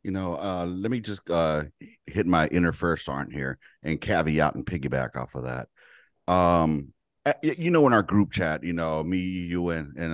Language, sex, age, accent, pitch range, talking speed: English, male, 40-59, American, 85-105 Hz, 200 wpm